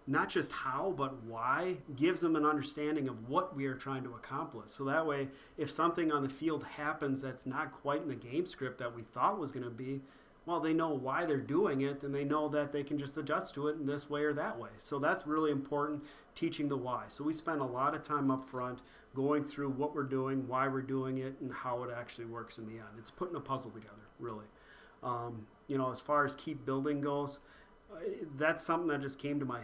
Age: 30-49